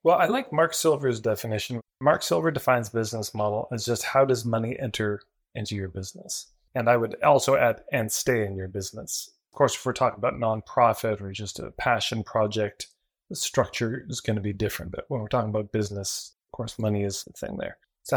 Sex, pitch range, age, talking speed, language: male, 110-135 Hz, 30-49, 210 wpm, English